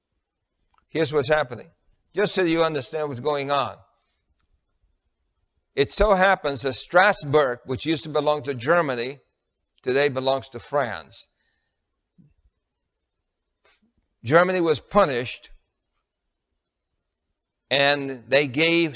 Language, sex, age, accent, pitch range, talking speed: English, male, 60-79, American, 125-155 Hz, 100 wpm